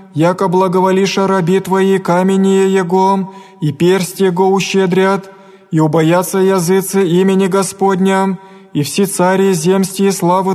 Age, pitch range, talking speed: 20-39, 185-195 Hz, 115 wpm